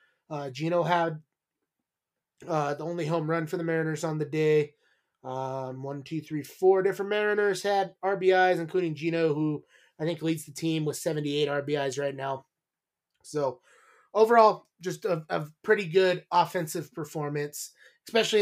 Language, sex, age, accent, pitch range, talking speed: English, male, 20-39, American, 150-195 Hz, 150 wpm